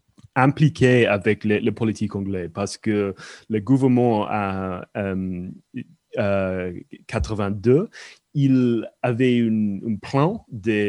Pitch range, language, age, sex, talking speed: 105-130 Hz, French, 30-49, male, 95 wpm